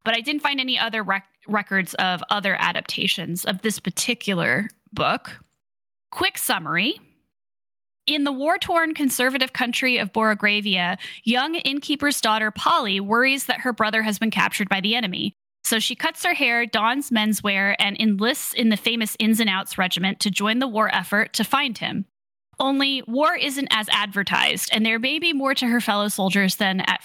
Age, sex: 10-29, female